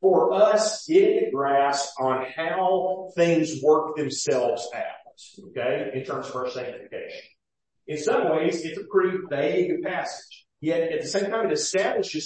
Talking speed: 155 wpm